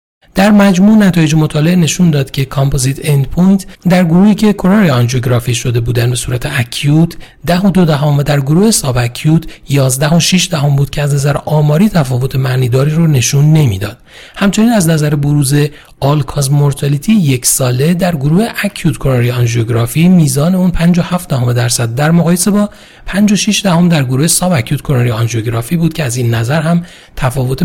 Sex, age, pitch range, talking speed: male, 40-59, 130-175 Hz, 180 wpm